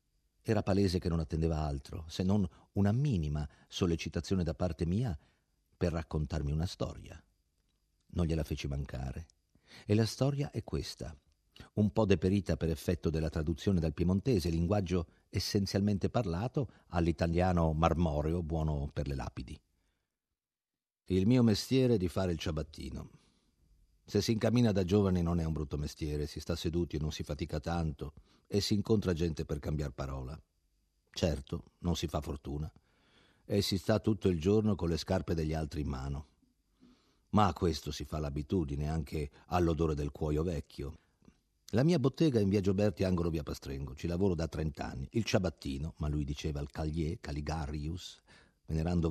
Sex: male